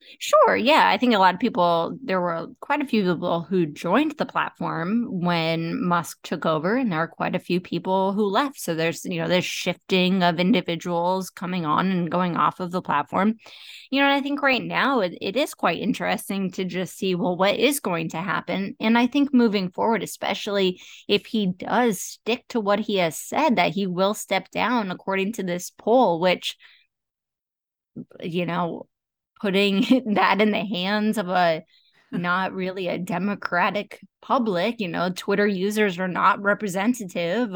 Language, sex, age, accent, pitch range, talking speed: English, female, 20-39, American, 175-220 Hz, 180 wpm